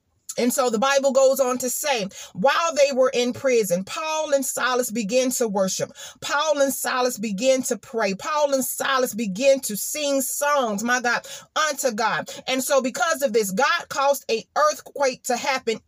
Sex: female